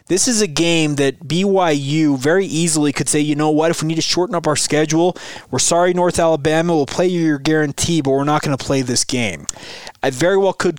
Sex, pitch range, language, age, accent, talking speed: male, 130-155 Hz, English, 20-39, American, 235 wpm